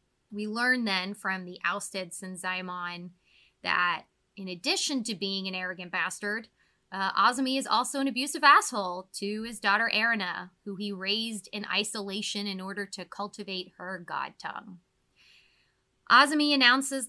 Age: 20-39